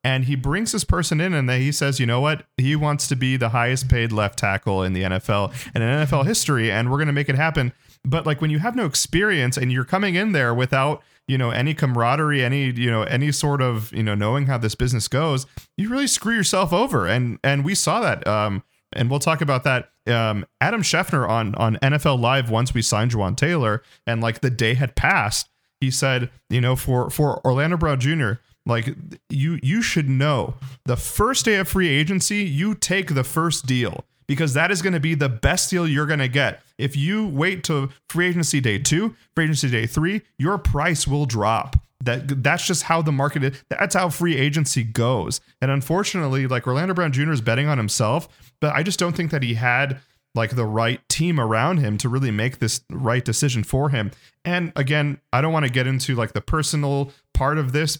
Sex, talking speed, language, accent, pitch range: male, 220 wpm, English, American, 120-155 Hz